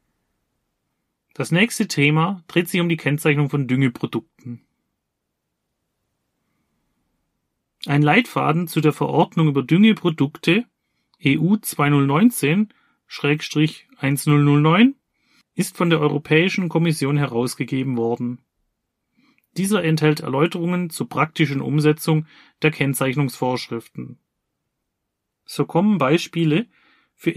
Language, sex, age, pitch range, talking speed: German, male, 30-49, 130-170 Hz, 80 wpm